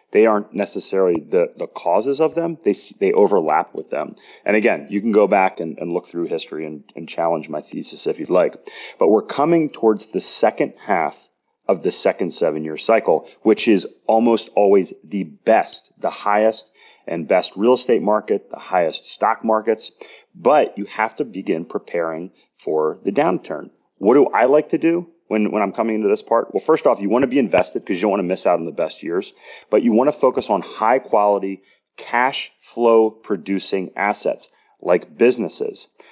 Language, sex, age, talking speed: English, male, 30-49, 195 wpm